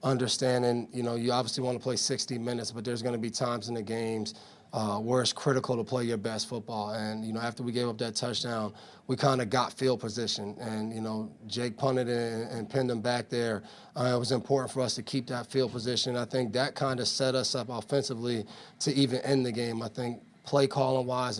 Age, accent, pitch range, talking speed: 30-49, American, 120-130 Hz, 235 wpm